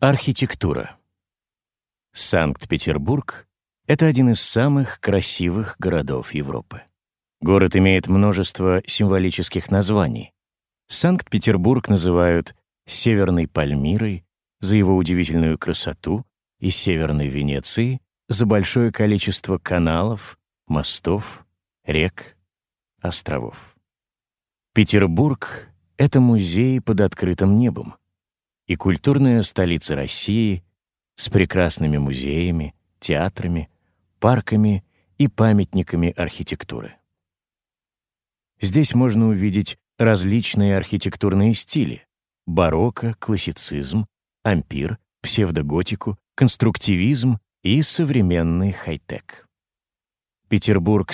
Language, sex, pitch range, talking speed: Slovak, male, 90-115 Hz, 75 wpm